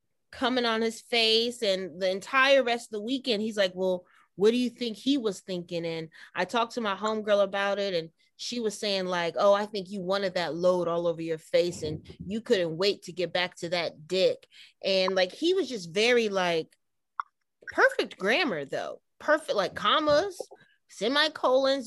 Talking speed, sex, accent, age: 190 wpm, female, American, 30-49